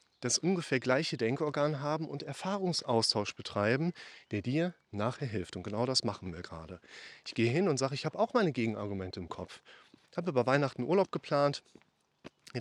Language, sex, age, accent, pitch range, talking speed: German, male, 30-49, German, 115-150 Hz, 175 wpm